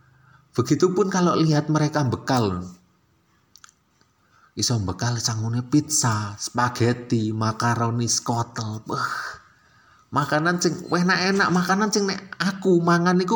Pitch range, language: 125-170 Hz, Indonesian